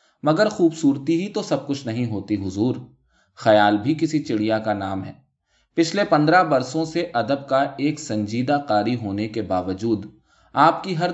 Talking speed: 165 wpm